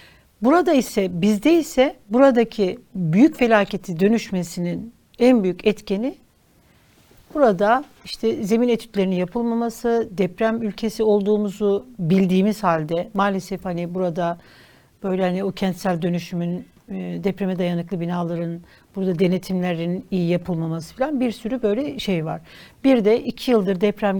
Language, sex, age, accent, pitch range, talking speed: Turkish, female, 60-79, native, 185-245 Hz, 115 wpm